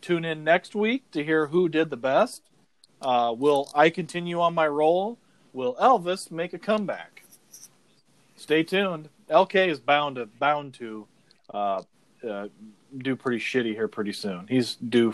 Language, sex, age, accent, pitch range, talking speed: English, male, 40-59, American, 135-195 Hz, 160 wpm